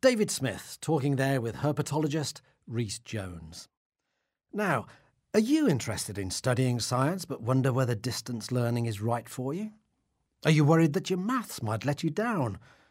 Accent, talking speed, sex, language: British, 160 wpm, male, English